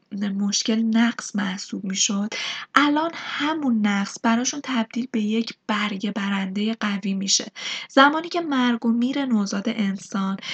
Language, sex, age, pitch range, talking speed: Persian, female, 10-29, 200-240 Hz, 130 wpm